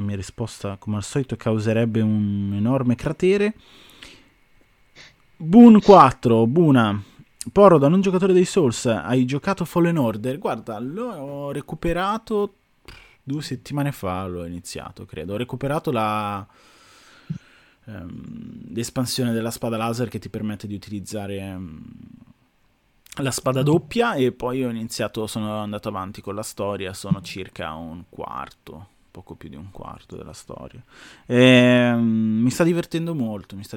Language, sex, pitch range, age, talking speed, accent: Italian, male, 105-140 Hz, 20-39, 135 wpm, native